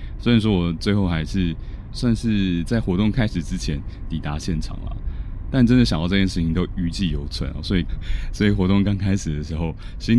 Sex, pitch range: male, 80-100 Hz